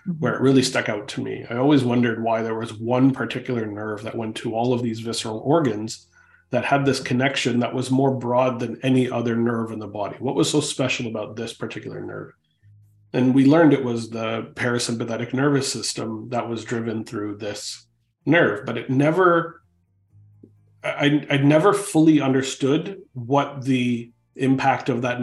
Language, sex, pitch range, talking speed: English, male, 115-135 Hz, 175 wpm